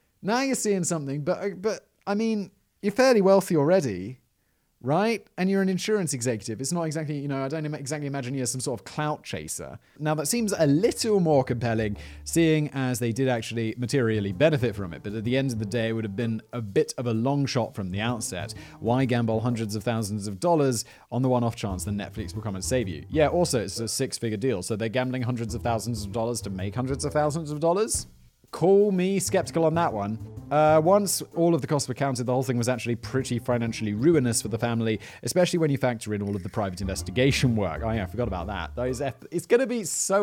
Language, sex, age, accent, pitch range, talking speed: English, male, 30-49, British, 105-150 Hz, 235 wpm